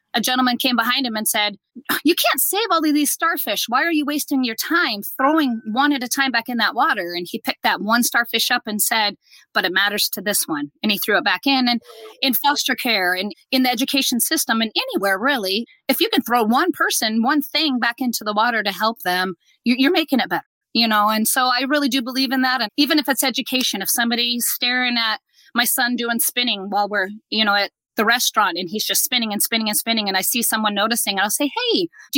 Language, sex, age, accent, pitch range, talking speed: English, female, 30-49, American, 215-275 Hz, 240 wpm